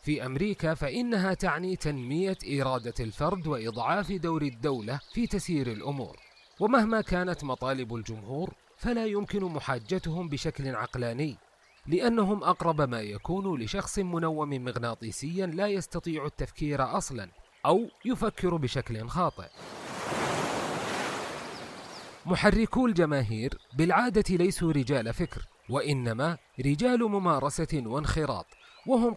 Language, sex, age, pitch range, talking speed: English, male, 30-49, 130-185 Hz, 100 wpm